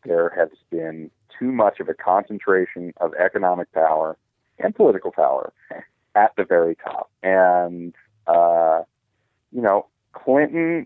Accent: American